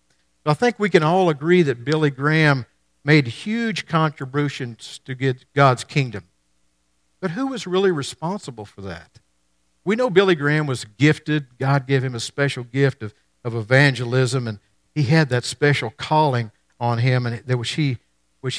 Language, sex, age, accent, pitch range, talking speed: English, male, 50-69, American, 95-155 Hz, 165 wpm